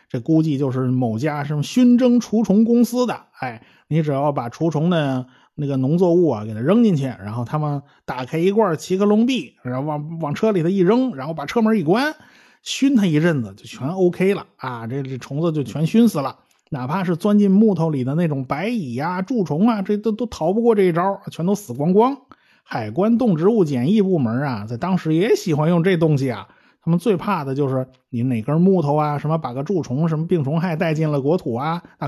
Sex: male